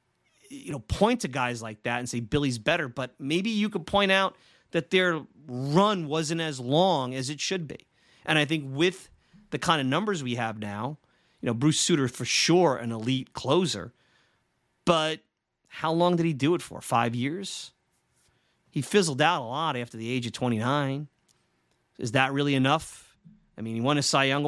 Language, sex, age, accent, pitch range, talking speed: English, male, 30-49, American, 125-160 Hz, 190 wpm